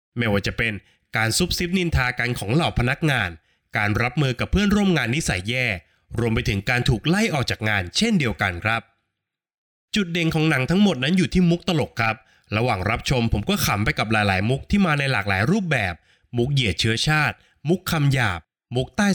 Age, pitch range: 20-39, 110-165 Hz